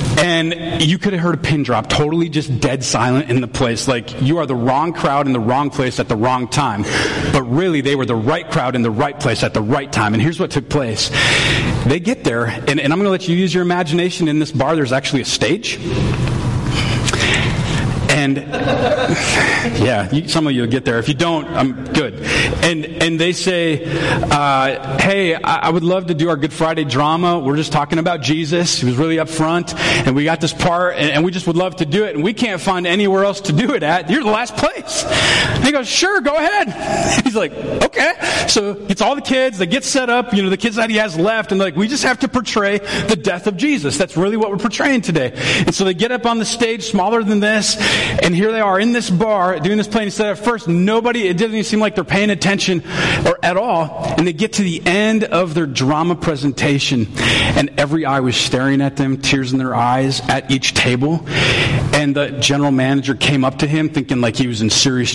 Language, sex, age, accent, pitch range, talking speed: English, male, 40-59, American, 135-190 Hz, 235 wpm